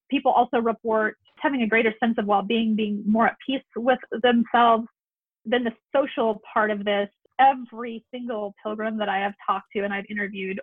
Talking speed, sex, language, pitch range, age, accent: 185 wpm, female, English, 205-230 Hz, 30-49, American